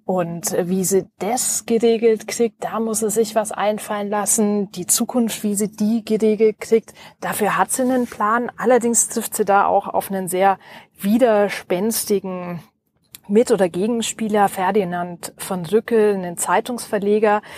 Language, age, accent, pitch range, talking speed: German, 30-49, German, 190-225 Hz, 145 wpm